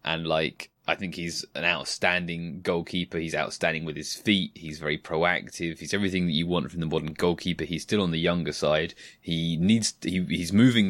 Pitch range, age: 80-95 Hz, 20-39